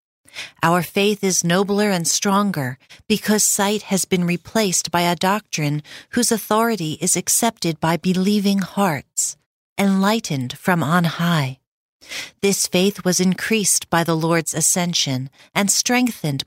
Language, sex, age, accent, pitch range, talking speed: English, female, 40-59, American, 155-200 Hz, 130 wpm